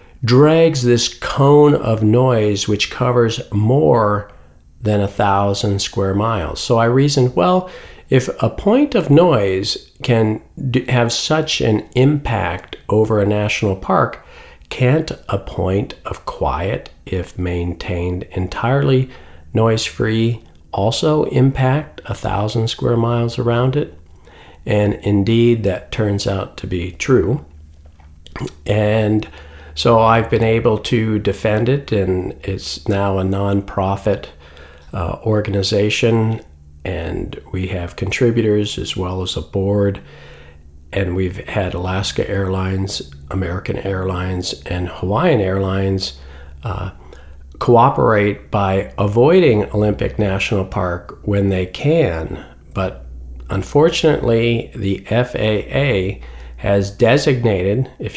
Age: 50-69